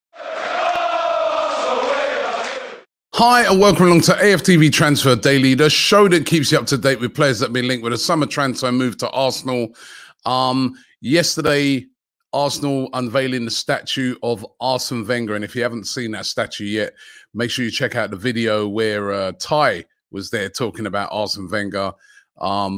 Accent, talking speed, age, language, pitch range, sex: British, 165 wpm, 30-49, English, 105-135 Hz, male